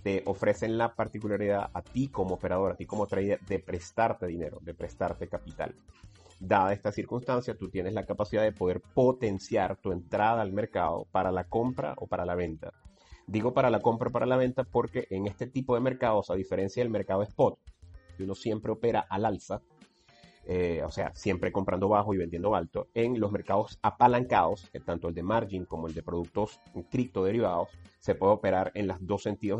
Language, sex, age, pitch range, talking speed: Spanish, male, 30-49, 90-115 Hz, 195 wpm